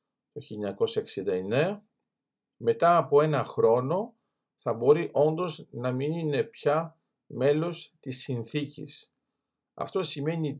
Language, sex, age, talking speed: Greek, male, 50-69, 100 wpm